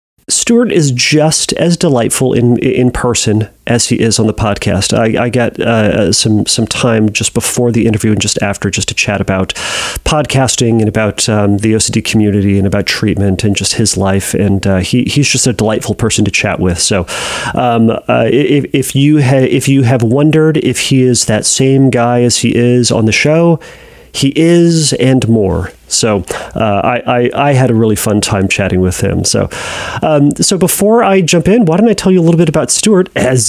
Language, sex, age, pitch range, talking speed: English, male, 30-49, 110-145 Hz, 205 wpm